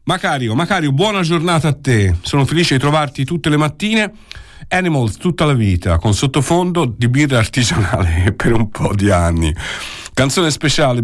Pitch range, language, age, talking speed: 95-145 Hz, Italian, 50-69, 160 wpm